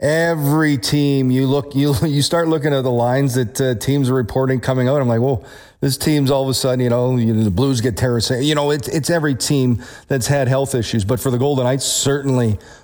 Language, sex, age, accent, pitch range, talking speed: English, male, 40-59, American, 120-140 Hz, 240 wpm